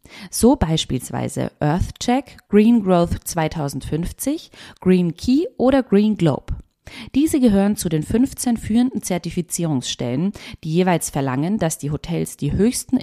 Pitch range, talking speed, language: 135-210 Hz, 120 wpm, German